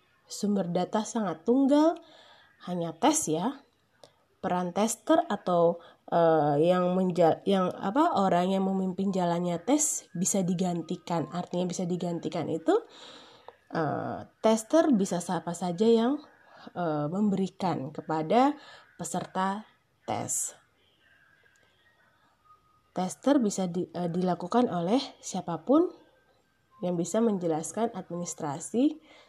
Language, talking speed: Indonesian, 100 wpm